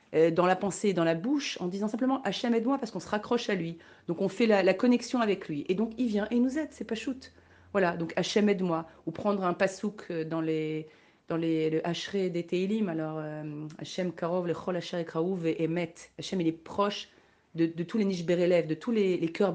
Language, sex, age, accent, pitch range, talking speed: French, female, 40-59, French, 165-205 Hz, 250 wpm